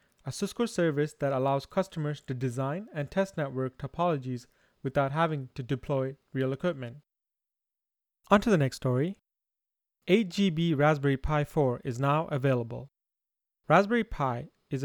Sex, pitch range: male, 135-175 Hz